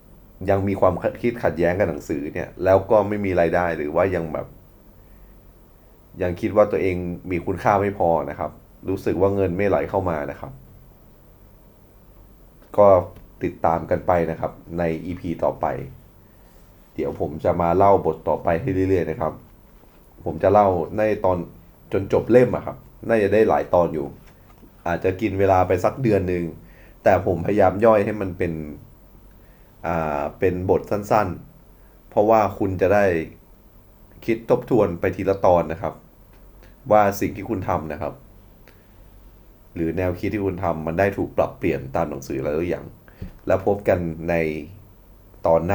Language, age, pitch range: Thai, 20-39, 85-100 Hz